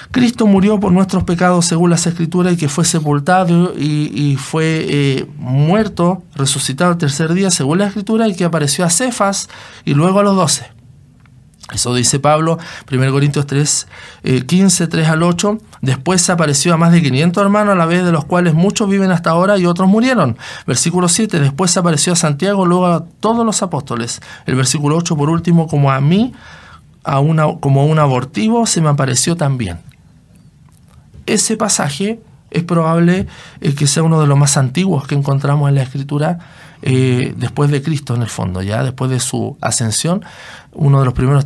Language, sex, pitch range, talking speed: Spanish, male, 135-185 Hz, 180 wpm